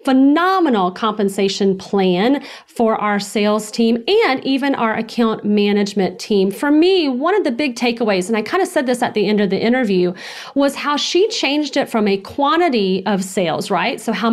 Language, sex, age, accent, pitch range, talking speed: English, female, 40-59, American, 205-270 Hz, 190 wpm